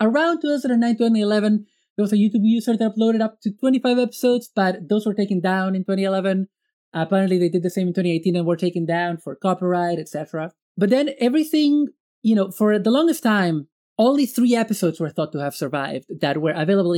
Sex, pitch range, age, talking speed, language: male, 175-230 Hz, 30-49, 195 wpm, English